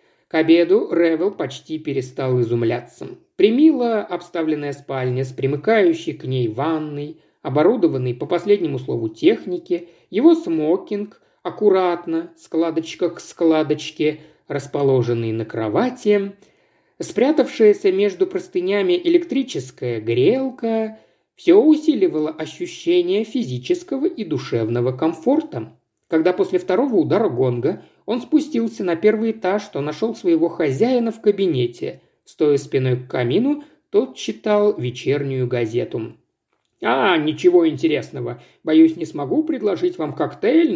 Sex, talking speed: male, 105 wpm